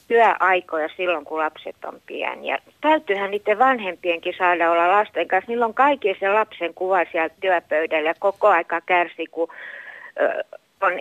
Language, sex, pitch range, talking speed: Finnish, female, 165-220 Hz, 145 wpm